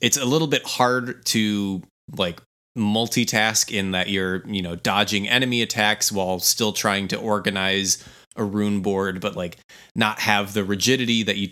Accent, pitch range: American, 95-105 Hz